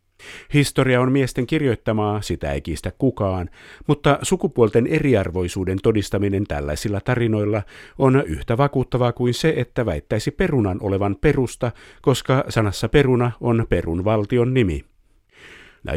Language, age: Finnish, 50-69